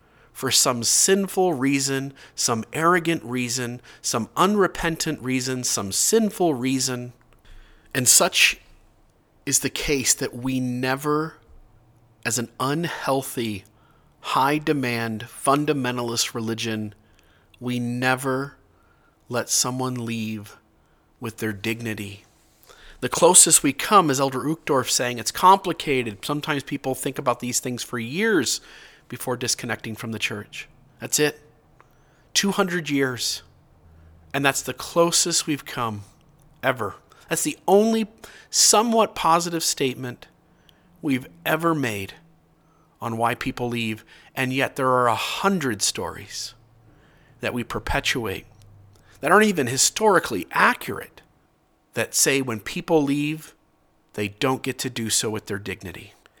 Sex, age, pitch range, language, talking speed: male, 30-49, 115-150 Hz, English, 120 wpm